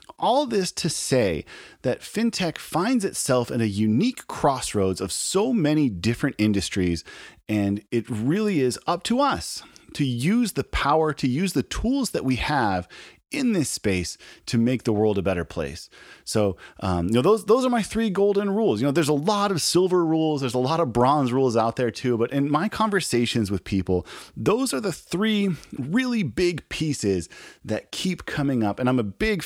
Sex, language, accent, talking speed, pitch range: male, English, American, 190 wpm, 100-160 Hz